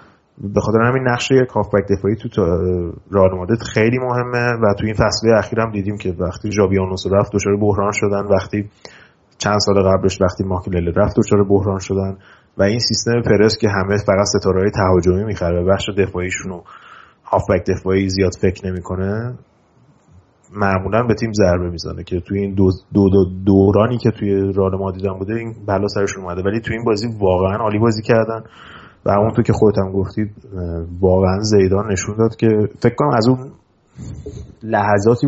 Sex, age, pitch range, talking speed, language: male, 30-49, 95-110 Hz, 165 wpm, Persian